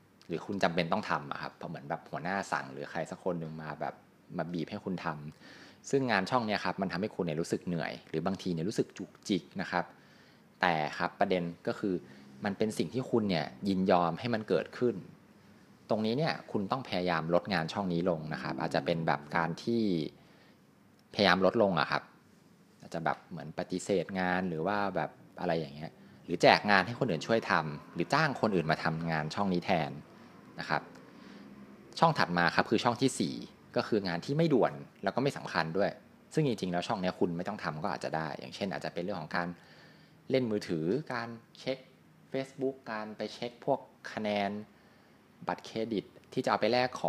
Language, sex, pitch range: Thai, male, 80-110 Hz